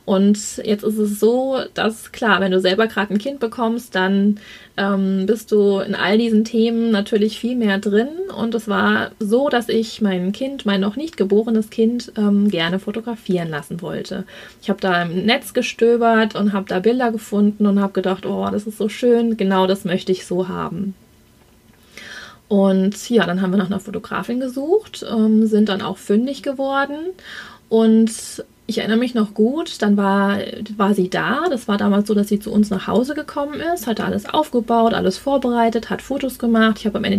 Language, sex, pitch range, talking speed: German, female, 200-245 Hz, 190 wpm